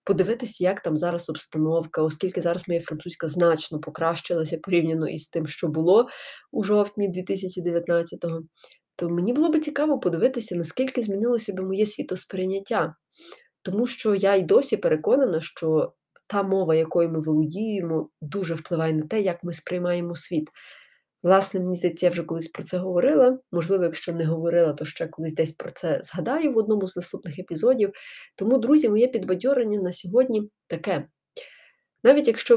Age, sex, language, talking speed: 20-39, female, Ukrainian, 155 wpm